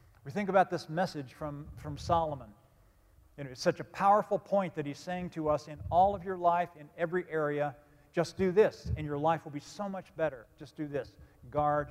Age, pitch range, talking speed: 50-69, 140-175 Hz, 205 wpm